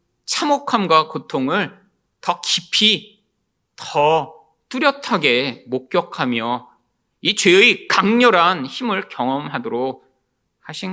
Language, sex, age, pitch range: Korean, male, 30-49, 130-220 Hz